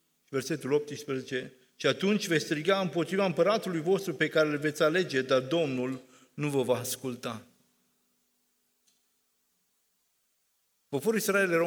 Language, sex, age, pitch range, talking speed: Romanian, male, 50-69, 135-185 Hz, 120 wpm